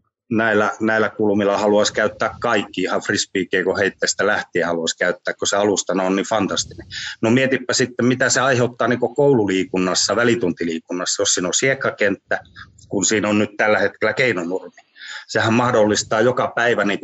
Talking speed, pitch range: 150 wpm, 100-125 Hz